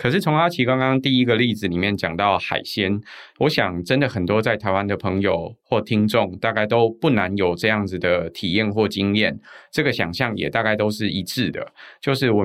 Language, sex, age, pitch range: Chinese, male, 20-39, 95-115 Hz